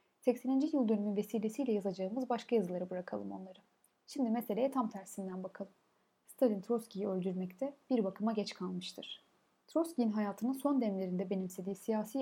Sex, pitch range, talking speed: female, 195-255 Hz, 135 wpm